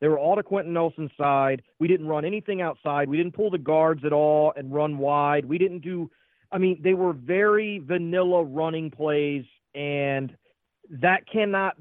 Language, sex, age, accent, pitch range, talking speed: English, male, 40-59, American, 150-190 Hz, 190 wpm